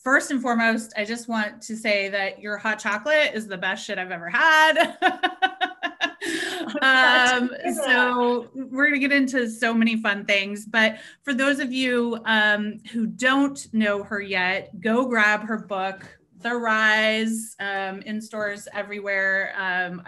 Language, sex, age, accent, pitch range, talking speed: English, female, 30-49, American, 195-230 Hz, 155 wpm